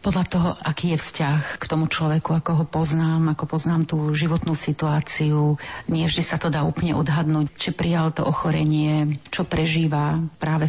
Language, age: Slovak, 40-59